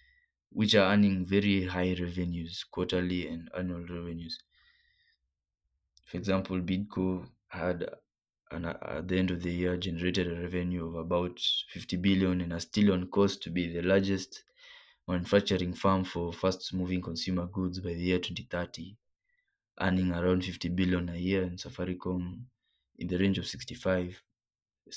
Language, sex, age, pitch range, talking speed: English, male, 20-39, 90-95 Hz, 145 wpm